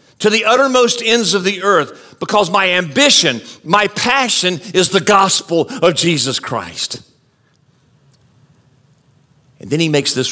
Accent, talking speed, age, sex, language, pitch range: American, 135 wpm, 50-69, male, English, 145-215 Hz